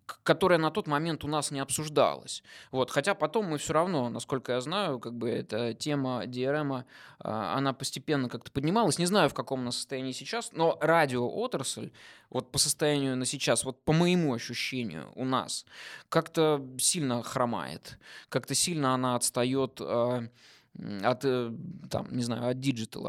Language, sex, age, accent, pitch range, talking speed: Russian, male, 20-39, native, 125-160 Hz, 150 wpm